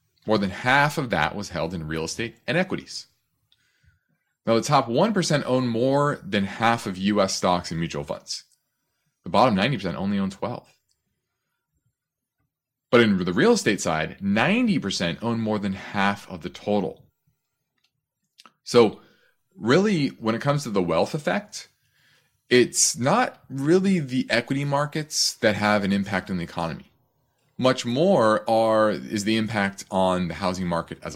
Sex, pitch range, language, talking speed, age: male, 100-140 Hz, English, 150 wpm, 30-49